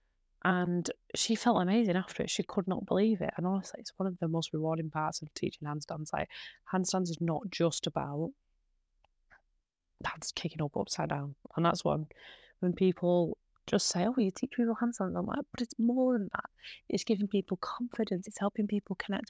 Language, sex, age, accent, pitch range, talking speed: English, female, 20-39, British, 160-205 Hz, 195 wpm